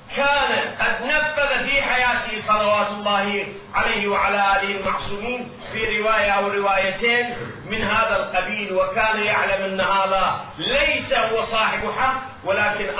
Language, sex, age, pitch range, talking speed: Arabic, male, 50-69, 200-250 Hz, 125 wpm